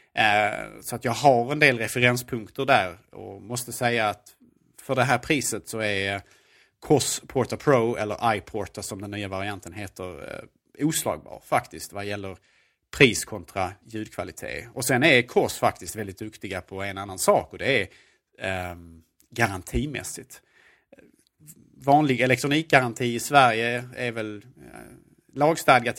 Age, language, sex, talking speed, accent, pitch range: 30-49, Swedish, male, 145 wpm, Norwegian, 100-125 Hz